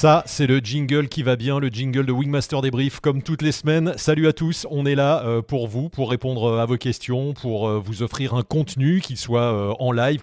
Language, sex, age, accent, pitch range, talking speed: French, male, 30-49, French, 110-140 Hz, 240 wpm